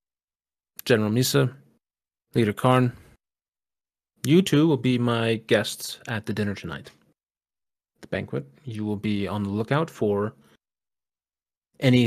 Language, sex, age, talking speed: English, male, 30-49, 120 wpm